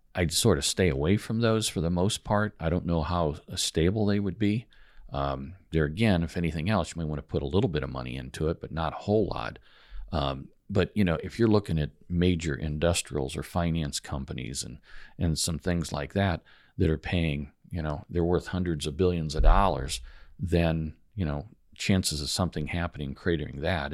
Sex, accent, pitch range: male, American, 75-95 Hz